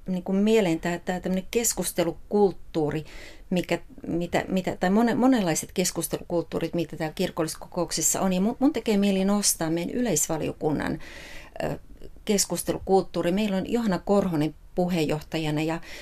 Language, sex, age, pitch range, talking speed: Finnish, female, 30-49, 175-220 Hz, 110 wpm